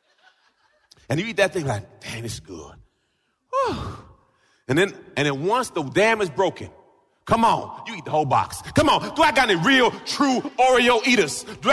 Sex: male